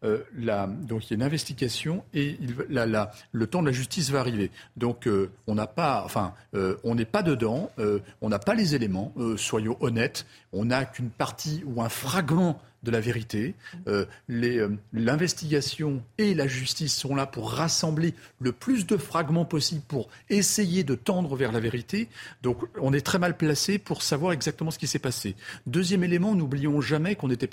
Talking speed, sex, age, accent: 190 wpm, male, 40-59, French